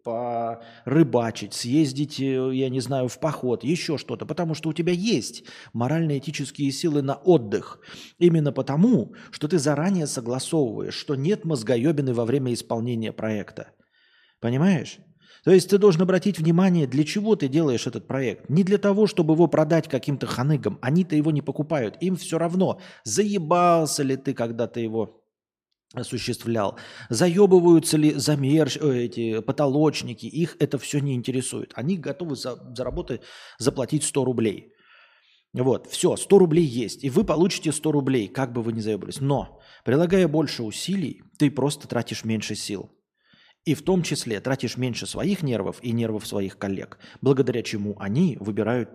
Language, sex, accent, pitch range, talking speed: Russian, male, native, 120-165 Hz, 150 wpm